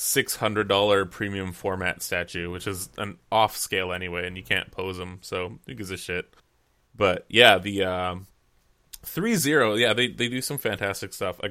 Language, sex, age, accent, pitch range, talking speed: English, male, 20-39, American, 90-105 Hz, 180 wpm